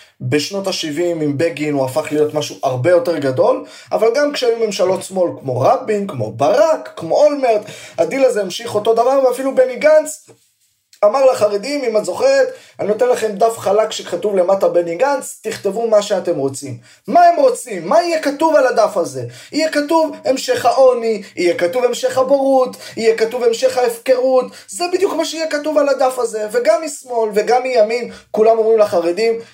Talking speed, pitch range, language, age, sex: 170 wpm, 200-285 Hz, Hebrew, 20-39, male